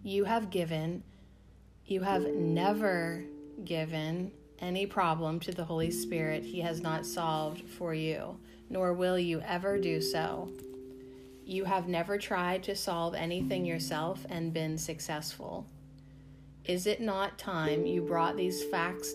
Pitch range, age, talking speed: 145-185 Hz, 30-49, 140 wpm